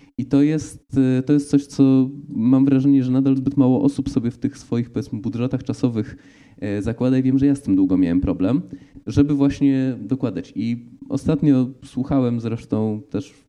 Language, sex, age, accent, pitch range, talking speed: Polish, male, 20-39, native, 105-145 Hz, 180 wpm